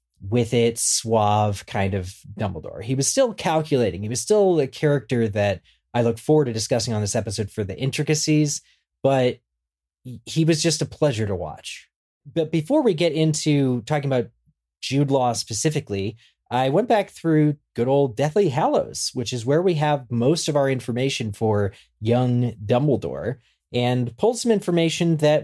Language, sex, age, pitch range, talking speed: English, male, 30-49, 105-150 Hz, 165 wpm